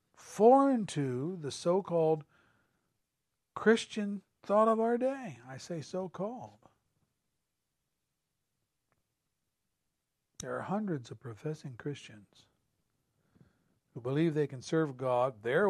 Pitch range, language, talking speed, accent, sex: 120-160 Hz, English, 95 wpm, American, male